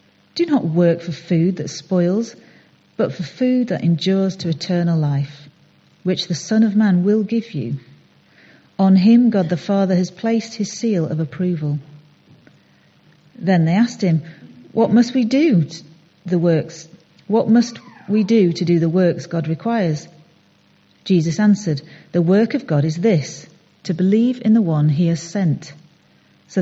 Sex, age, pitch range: female, 40-59, 155-215 Hz